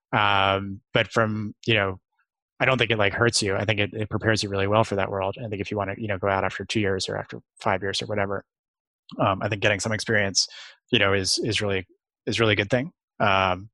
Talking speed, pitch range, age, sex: 260 wpm, 100-115 Hz, 20-39, male